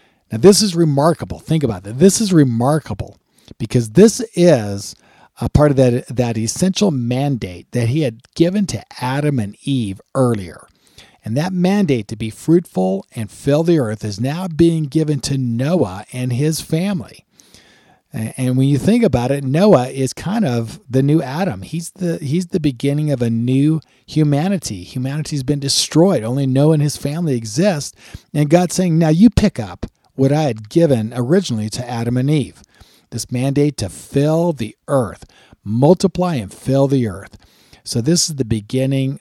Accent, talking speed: American, 170 wpm